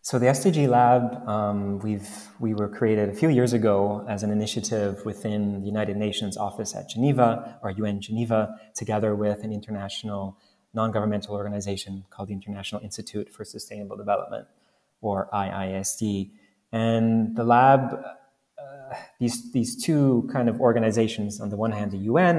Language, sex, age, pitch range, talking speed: English, male, 20-39, 105-120 Hz, 155 wpm